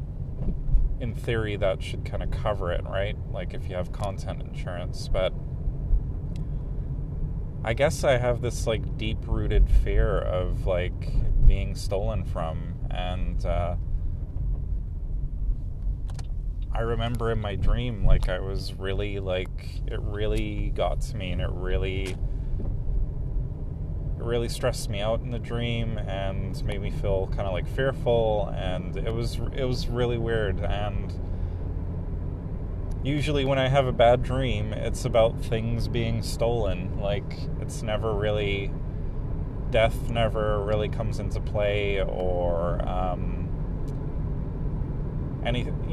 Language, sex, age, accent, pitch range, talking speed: English, male, 30-49, American, 90-120 Hz, 125 wpm